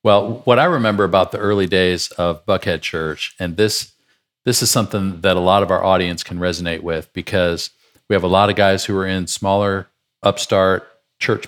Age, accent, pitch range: 50-69, American, 90-110 Hz